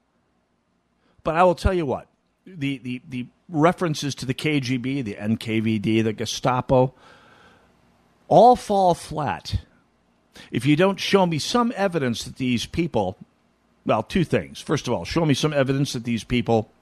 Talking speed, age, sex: 150 wpm, 50-69, male